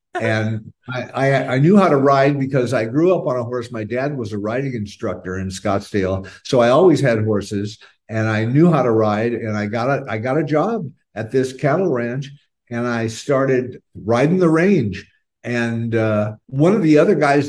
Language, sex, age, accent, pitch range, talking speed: English, male, 50-69, American, 115-150 Hz, 200 wpm